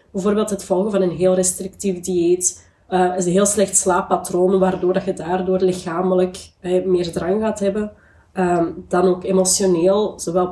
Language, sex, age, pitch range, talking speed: Dutch, female, 20-39, 175-195 Hz, 135 wpm